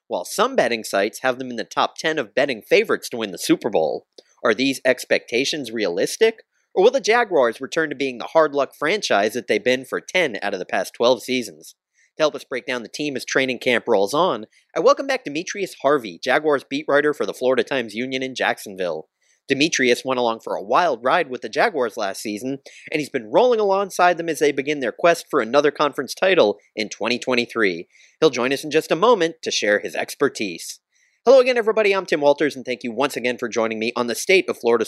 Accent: American